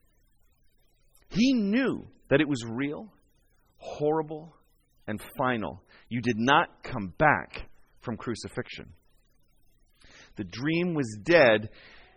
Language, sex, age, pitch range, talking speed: English, male, 30-49, 120-190 Hz, 100 wpm